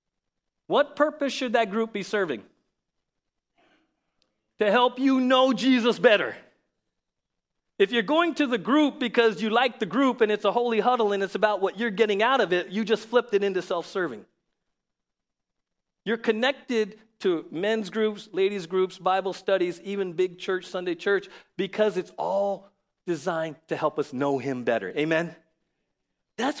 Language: English